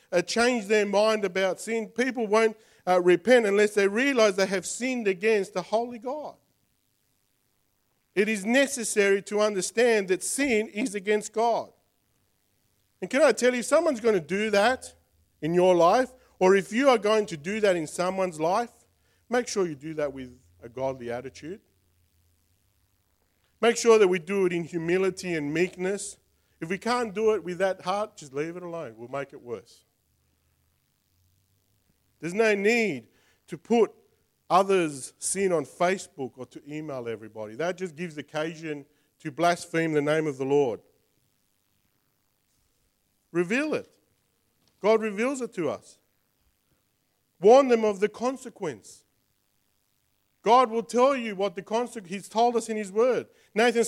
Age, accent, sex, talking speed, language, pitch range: 40-59, Australian, male, 155 wpm, English, 150-225 Hz